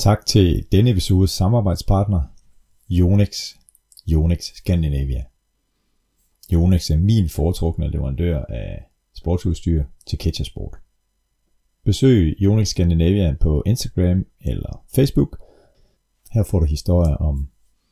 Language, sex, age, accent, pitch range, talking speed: Danish, male, 30-49, native, 85-110 Hz, 95 wpm